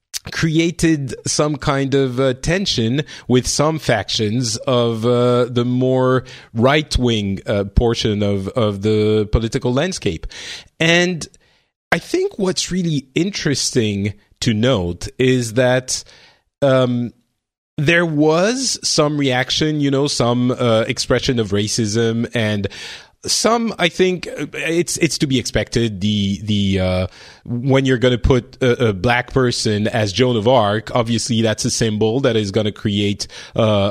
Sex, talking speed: male, 140 wpm